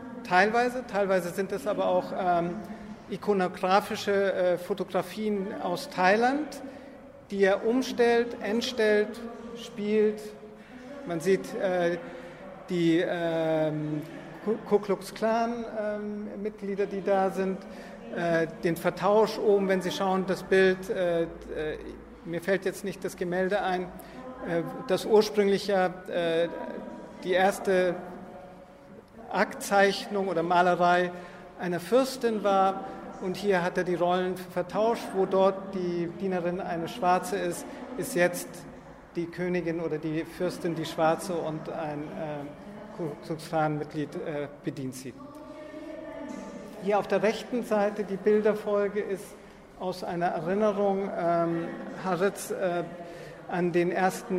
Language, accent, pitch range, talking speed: German, German, 175-210 Hz, 115 wpm